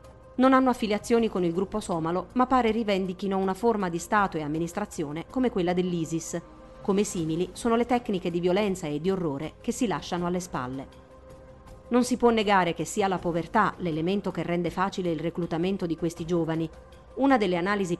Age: 40-59